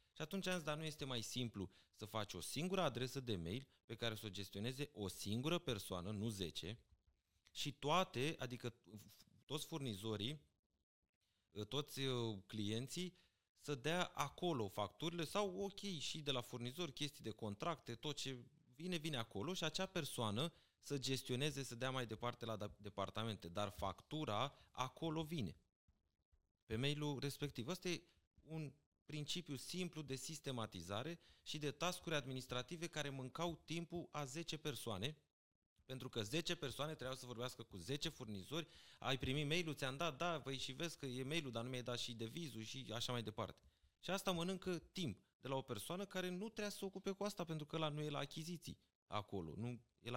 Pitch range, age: 110-160 Hz, 30-49